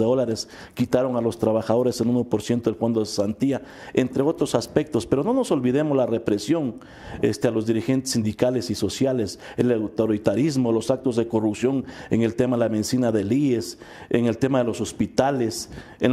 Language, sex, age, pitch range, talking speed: English, male, 50-69, 115-140 Hz, 180 wpm